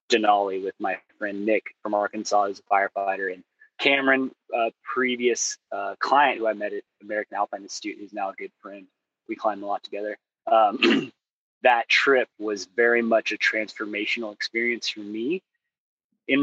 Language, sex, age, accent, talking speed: English, male, 20-39, American, 165 wpm